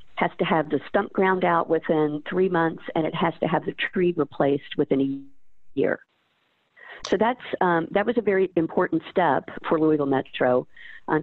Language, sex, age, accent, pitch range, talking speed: English, female, 50-69, American, 155-185 Hz, 180 wpm